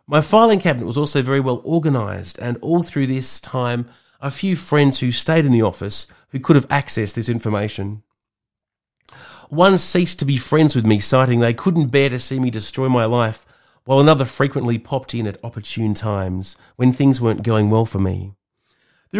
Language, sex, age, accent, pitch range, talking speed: English, male, 40-59, Australian, 115-160 Hz, 190 wpm